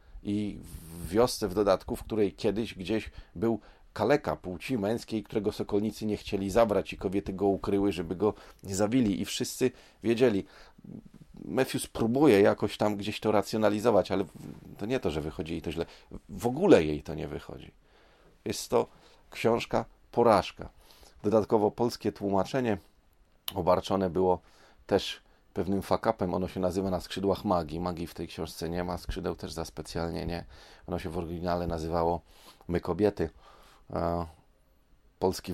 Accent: native